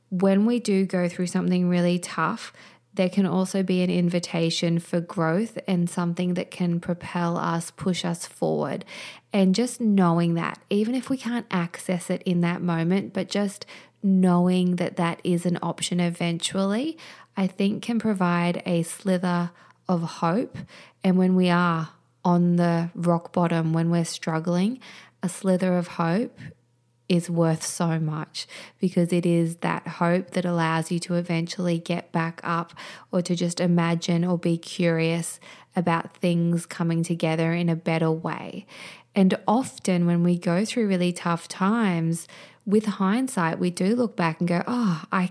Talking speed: 160 wpm